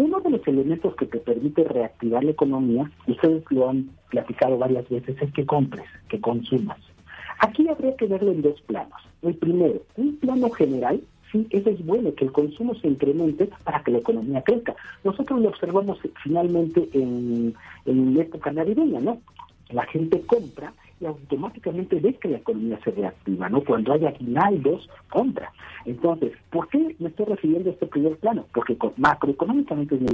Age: 50-69